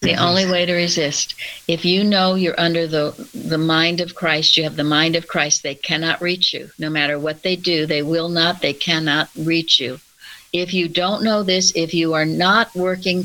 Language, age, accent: English, 60-79, American